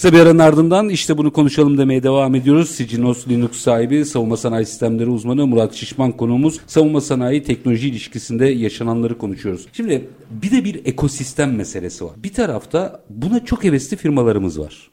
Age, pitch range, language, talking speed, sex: 50-69, 115-160 Hz, Turkish, 155 wpm, male